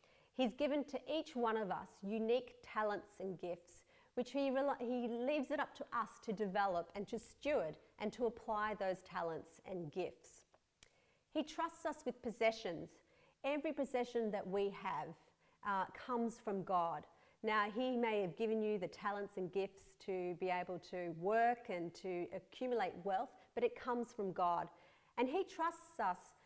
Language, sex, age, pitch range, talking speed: English, female, 40-59, 190-250 Hz, 165 wpm